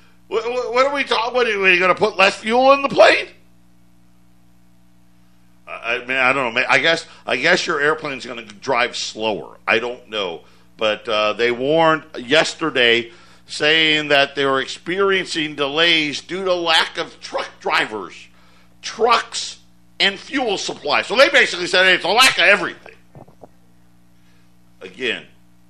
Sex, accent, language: male, American, English